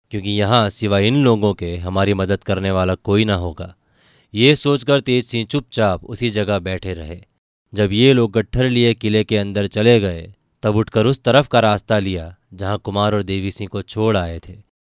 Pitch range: 95-115 Hz